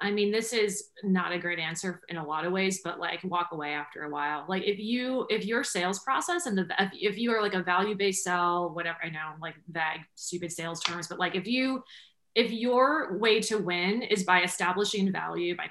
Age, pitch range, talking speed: 20-39, 180-220 Hz, 220 wpm